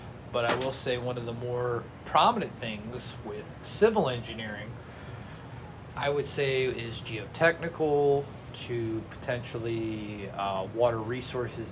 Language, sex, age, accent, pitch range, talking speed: English, male, 30-49, American, 110-130 Hz, 120 wpm